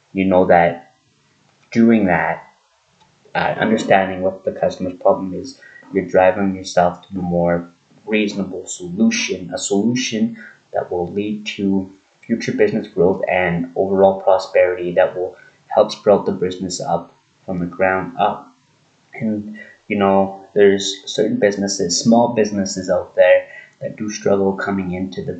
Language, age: English, 20-39